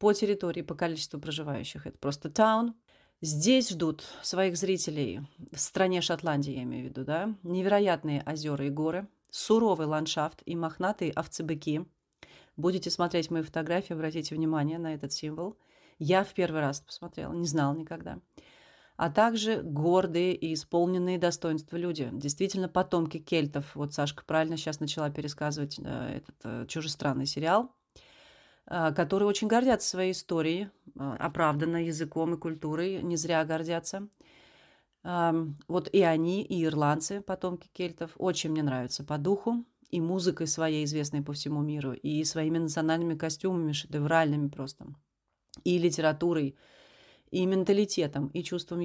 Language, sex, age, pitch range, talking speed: Russian, female, 30-49, 150-180 Hz, 135 wpm